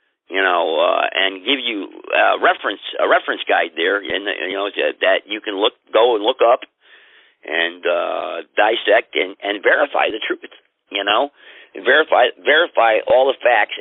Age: 50-69